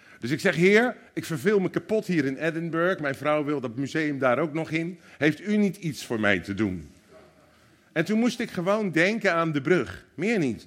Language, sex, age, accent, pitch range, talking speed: Dutch, male, 50-69, Dutch, 115-180 Hz, 220 wpm